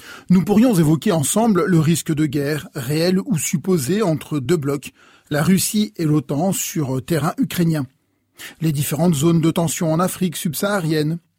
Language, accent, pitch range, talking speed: French, French, 150-195 Hz, 155 wpm